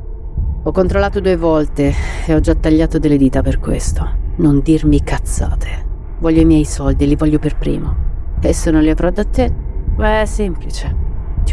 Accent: native